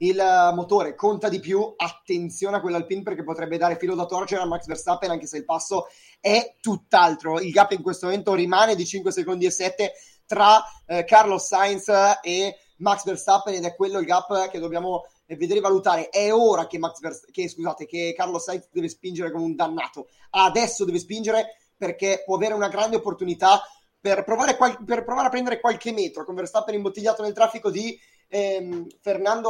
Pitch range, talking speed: 175-220 Hz, 190 wpm